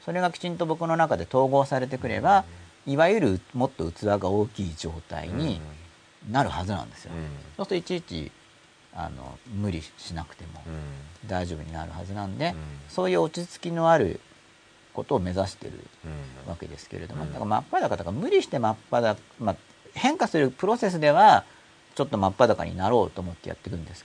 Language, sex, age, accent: Japanese, male, 40-59, native